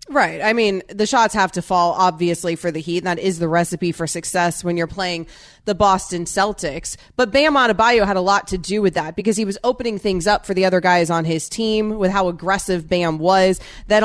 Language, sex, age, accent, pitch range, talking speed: English, female, 20-39, American, 170-205 Hz, 230 wpm